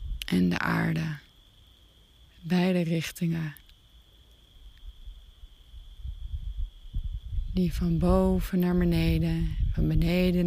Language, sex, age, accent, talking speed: Dutch, female, 30-49, Dutch, 70 wpm